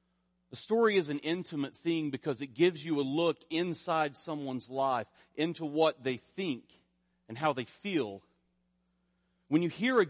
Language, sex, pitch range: English, male, 120-165 Hz